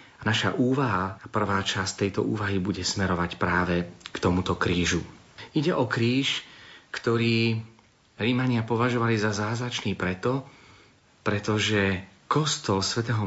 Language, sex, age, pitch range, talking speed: Slovak, male, 40-59, 95-115 Hz, 110 wpm